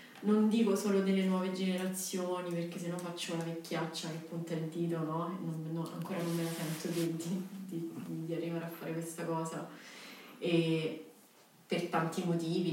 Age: 30-49